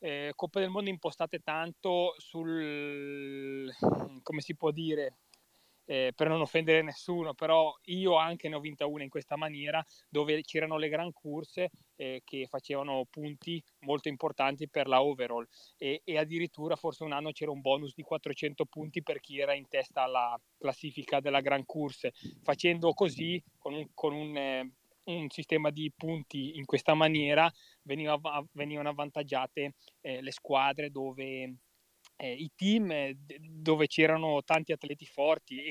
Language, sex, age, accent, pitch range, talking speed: Italian, male, 20-39, native, 140-160 Hz, 155 wpm